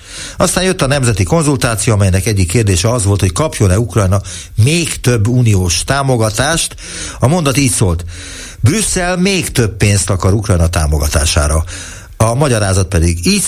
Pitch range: 90-120 Hz